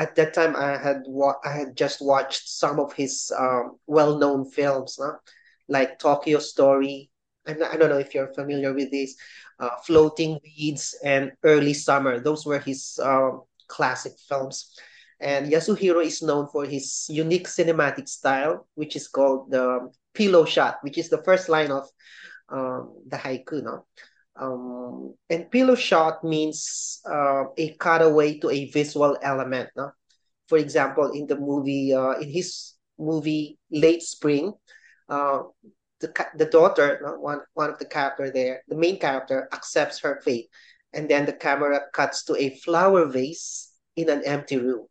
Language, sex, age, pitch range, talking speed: English, male, 20-39, 135-160 Hz, 160 wpm